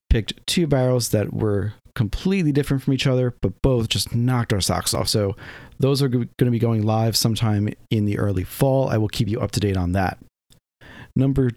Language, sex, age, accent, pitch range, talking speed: English, male, 40-59, American, 105-130 Hz, 205 wpm